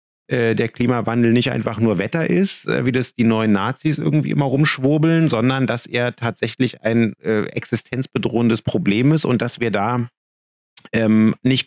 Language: German